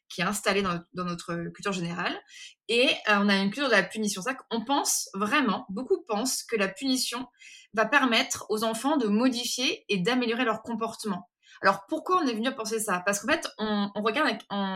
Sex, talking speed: female, 205 wpm